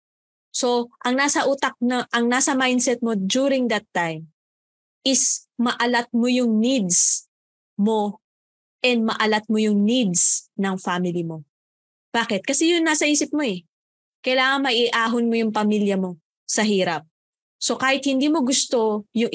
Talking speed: 145 wpm